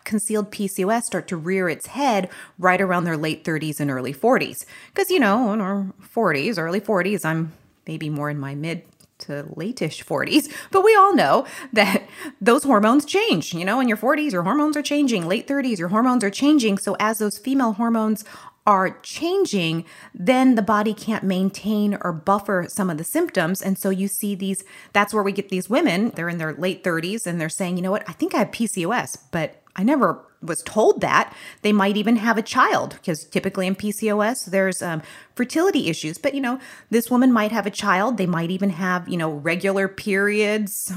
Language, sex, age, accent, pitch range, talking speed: English, female, 30-49, American, 180-230 Hz, 200 wpm